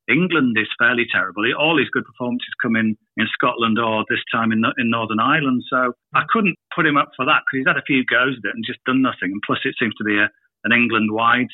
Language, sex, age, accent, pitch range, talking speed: English, male, 40-59, British, 120-160 Hz, 255 wpm